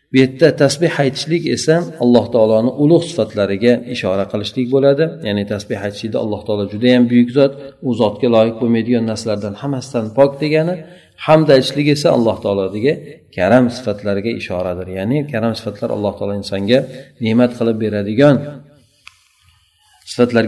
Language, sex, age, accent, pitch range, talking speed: Russian, male, 40-59, Turkish, 105-135 Hz, 100 wpm